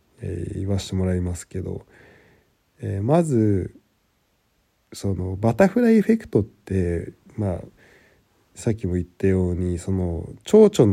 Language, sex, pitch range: Japanese, male, 95-120 Hz